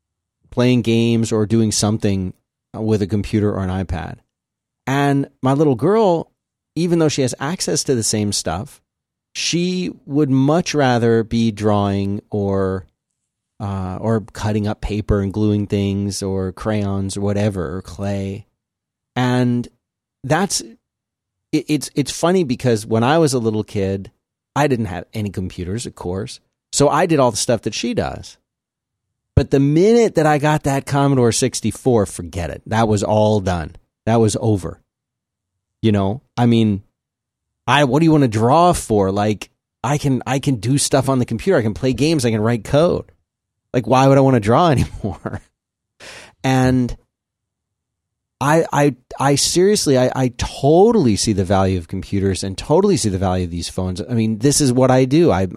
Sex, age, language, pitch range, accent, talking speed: male, 30-49, English, 100-135 Hz, American, 175 wpm